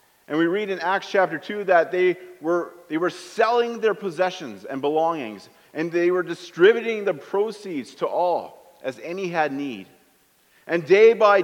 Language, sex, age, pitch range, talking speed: English, male, 40-59, 145-205 Hz, 170 wpm